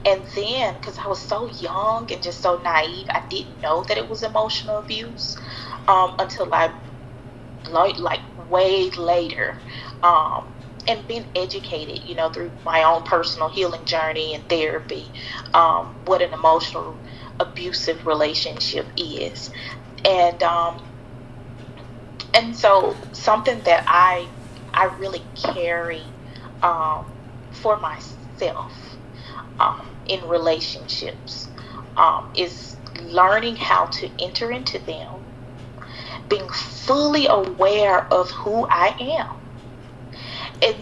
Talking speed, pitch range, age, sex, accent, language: 115 wpm, 125-180 Hz, 30-49, female, American, English